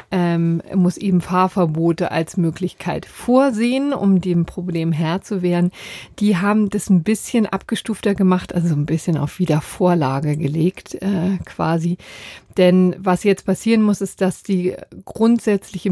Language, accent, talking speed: German, German, 135 wpm